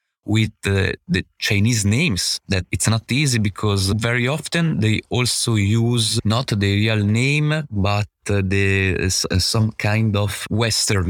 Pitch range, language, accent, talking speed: 95-115 Hz, English, Italian, 145 wpm